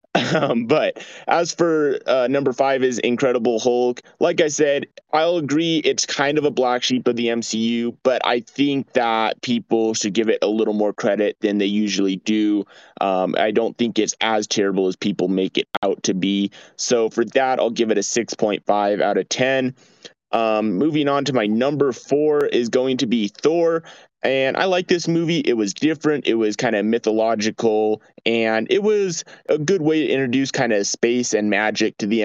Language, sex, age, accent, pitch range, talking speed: English, male, 20-39, American, 110-140 Hz, 195 wpm